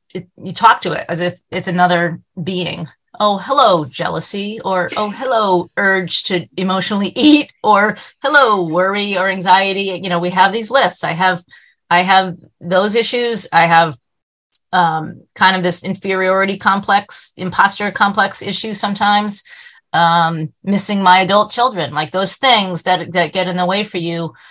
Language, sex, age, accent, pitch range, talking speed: English, female, 30-49, American, 175-215 Hz, 160 wpm